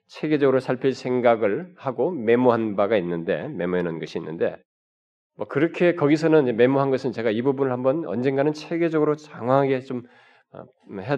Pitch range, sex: 110-155 Hz, male